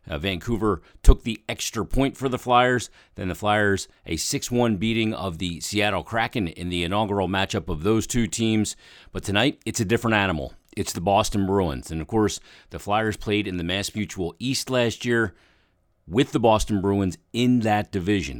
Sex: male